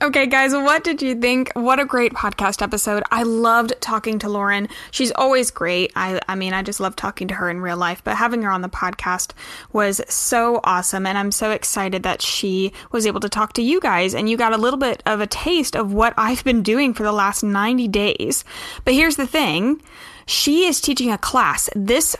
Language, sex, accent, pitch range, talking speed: English, female, American, 200-255 Hz, 220 wpm